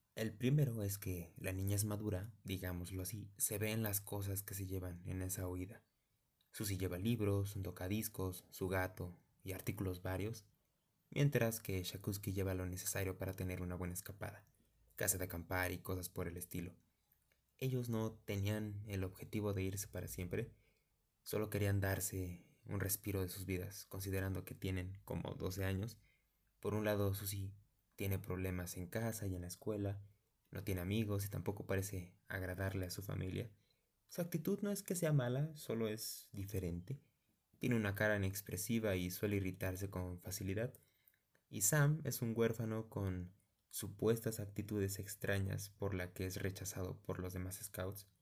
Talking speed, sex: 165 wpm, male